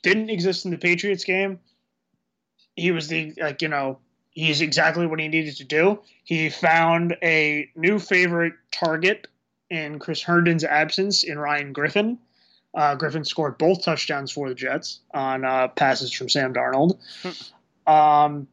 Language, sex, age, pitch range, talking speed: English, male, 20-39, 145-180 Hz, 150 wpm